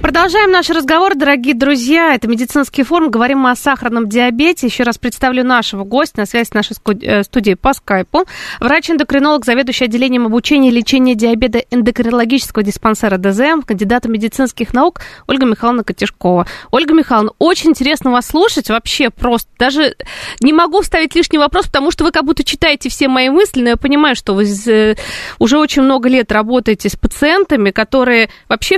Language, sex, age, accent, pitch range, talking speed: Russian, female, 20-39, native, 225-290 Hz, 165 wpm